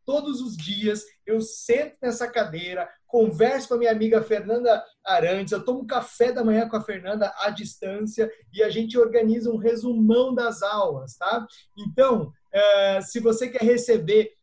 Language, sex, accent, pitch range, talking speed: Portuguese, male, Brazilian, 200-240 Hz, 160 wpm